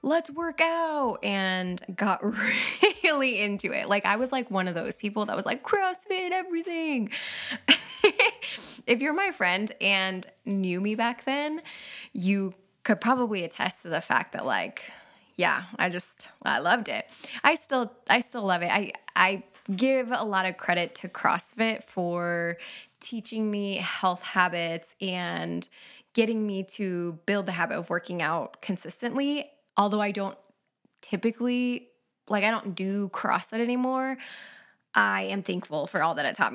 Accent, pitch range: American, 185-250 Hz